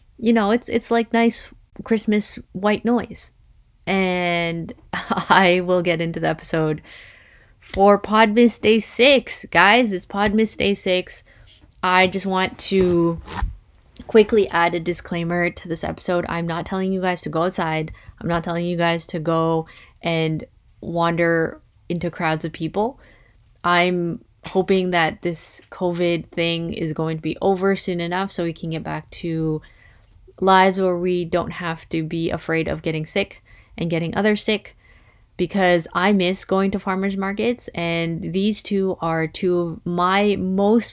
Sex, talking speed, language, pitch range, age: female, 155 wpm, English, 165-195 Hz, 20-39